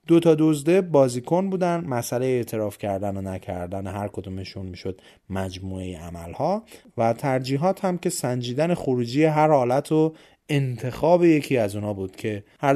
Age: 30-49